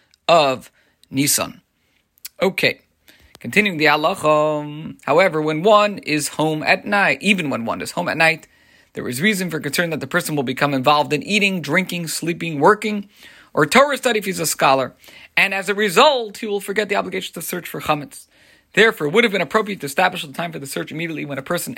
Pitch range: 145-205 Hz